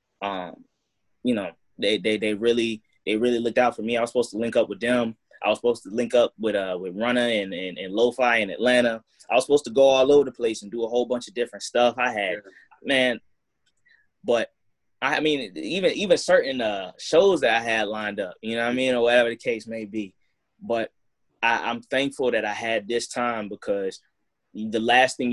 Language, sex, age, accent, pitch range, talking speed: English, male, 20-39, American, 115-140 Hz, 225 wpm